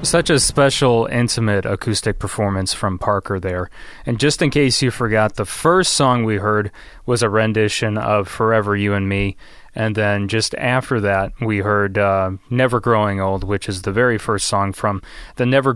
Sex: male